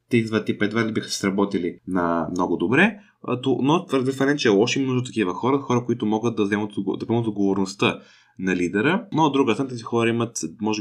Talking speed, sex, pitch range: 190 wpm, male, 100-140 Hz